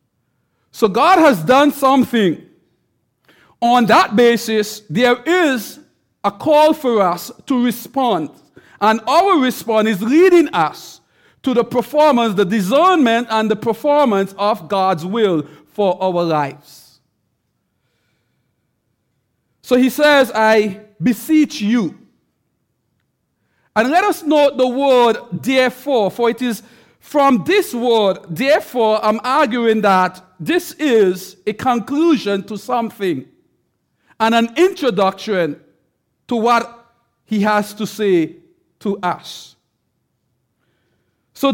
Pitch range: 195-270 Hz